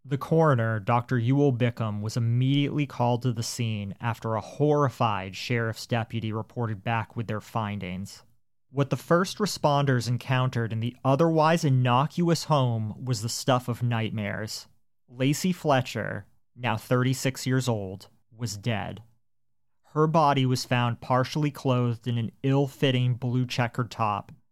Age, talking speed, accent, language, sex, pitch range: 30-49, 135 wpm, American, English, male, 115-135 Hz